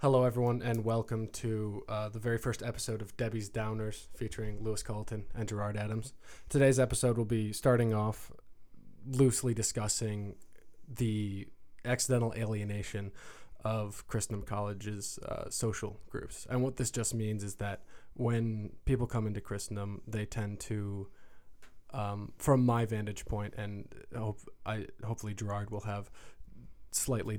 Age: 20-39